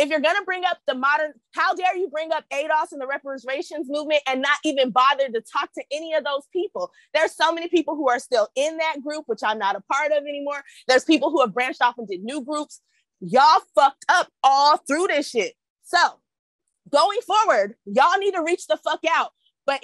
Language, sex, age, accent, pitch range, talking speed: English, female, 20-39, American, 280-345 Hz, 220 wpm